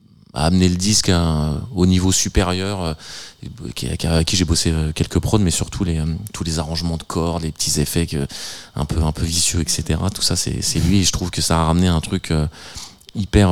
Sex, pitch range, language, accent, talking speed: male, 80-90 Hz, French, French, 225 wpm